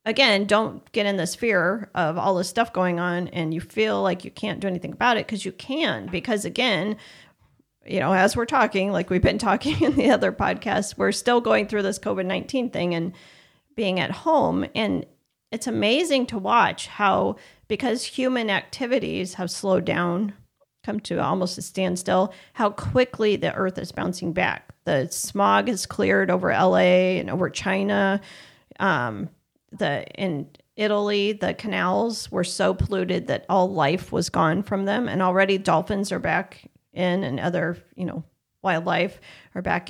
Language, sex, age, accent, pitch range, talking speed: English, female, 40-59, American, 180-210 Hz, 170 wpm